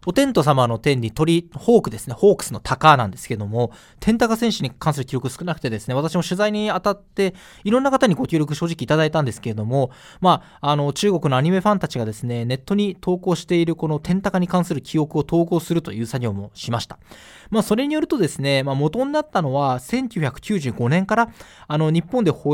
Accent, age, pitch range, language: native, 20-39, 125-200 Hz, Japanese